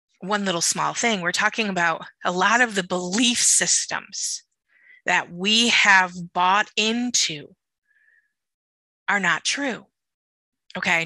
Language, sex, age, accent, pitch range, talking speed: English, female, 20-39, American, 175-225 Hz, 120 wpm